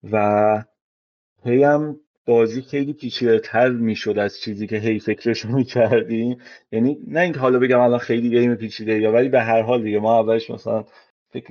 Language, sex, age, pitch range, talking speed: Persian, male, 30-49, 110-130 Hz, 155 wpm